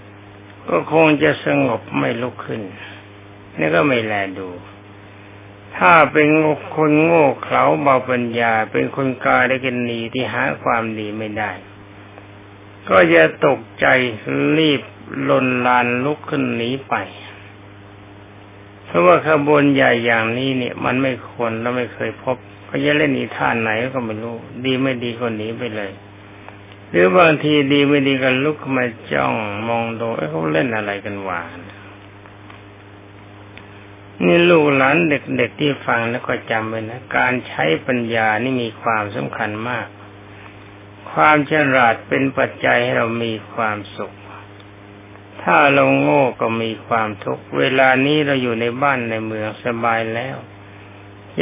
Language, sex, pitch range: Thai, male, 100-130 Hz